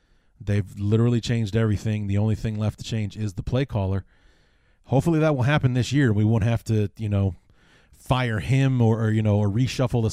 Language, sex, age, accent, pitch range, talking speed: English, male, 30-49, American, 105-125 Hz, 205 wpm